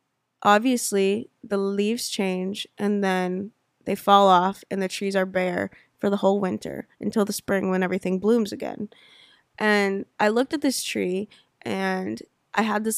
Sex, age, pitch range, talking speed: female, 20-39, 190-210 Hz, 160 wpm